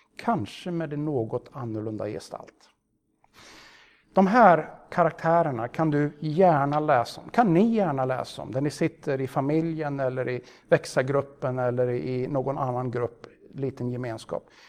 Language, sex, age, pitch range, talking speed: Swedish, male, 60-79, 130-170 Hz, 140 wpm